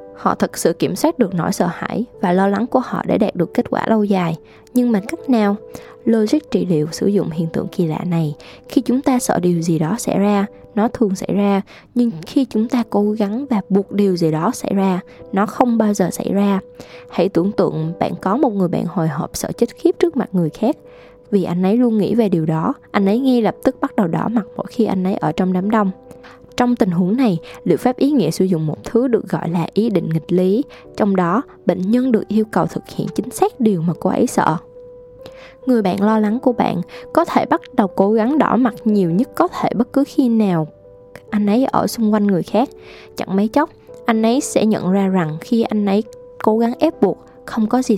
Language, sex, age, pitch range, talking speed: Vietnamese, female, 10-29, 185-245 Hz, 240 wpm